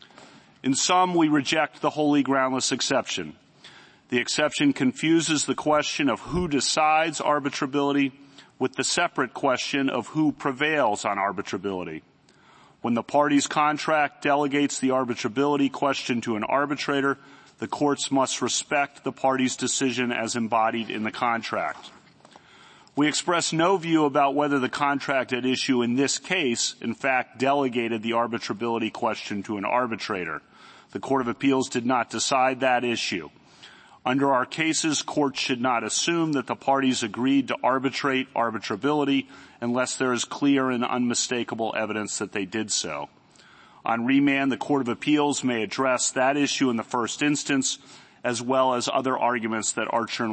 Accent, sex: American, male